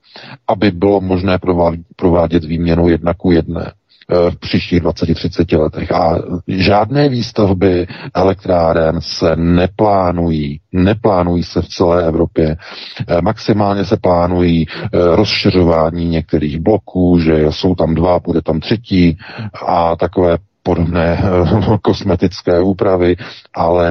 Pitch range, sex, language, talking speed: 85-100 Hz, male, Czech, 105 wpm